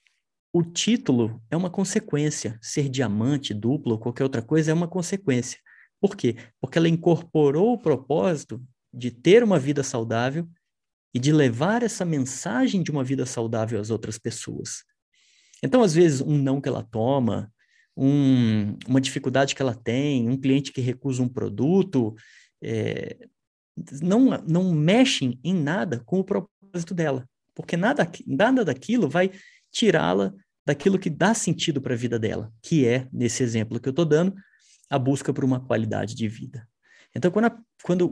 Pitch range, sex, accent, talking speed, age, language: 120-170 Hz, male, Brazilian, 155 wpm, 30-49, Portuguese